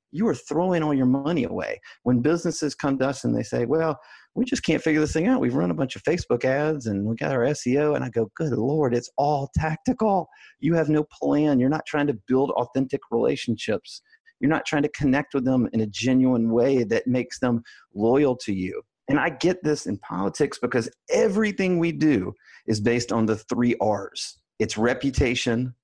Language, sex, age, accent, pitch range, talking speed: English, male, 30-49, American, 110-145 Hz, 205 wpm